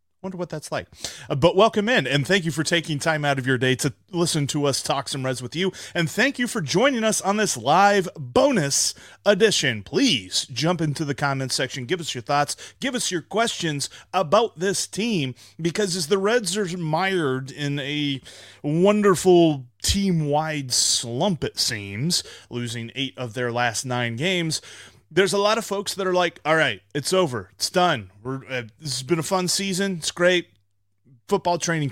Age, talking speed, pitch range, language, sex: 30-49, 190 wpm, 120-180 Hz, English, male